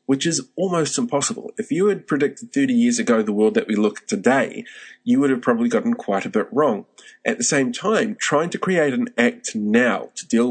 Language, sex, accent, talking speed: English, male, Australian, 225 wpm